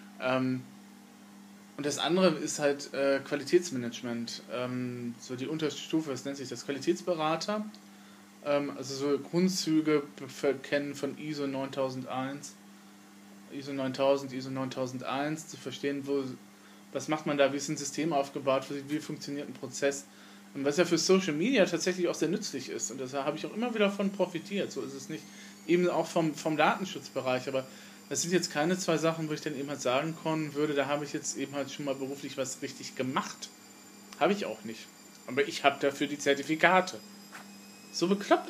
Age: 20-39